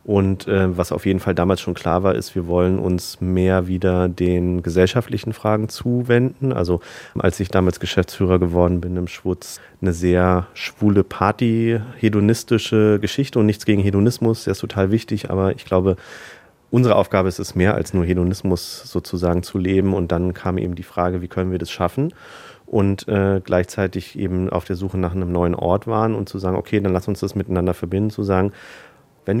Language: German